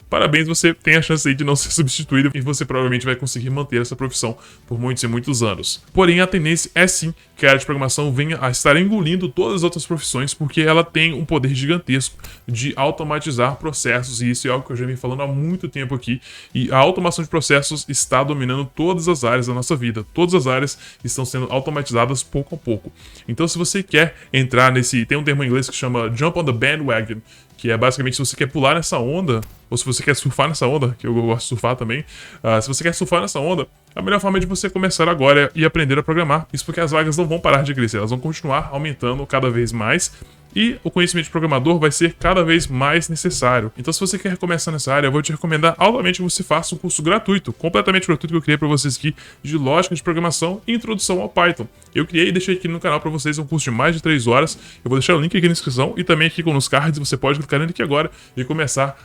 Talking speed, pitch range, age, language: 245 wpm, 130-165 Hz, 10-29, Portuguese